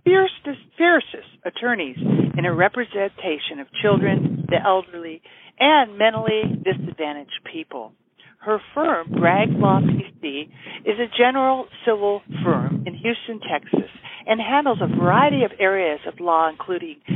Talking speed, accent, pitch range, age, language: 125 wpm, American, 170-245 Hz, 50-69, English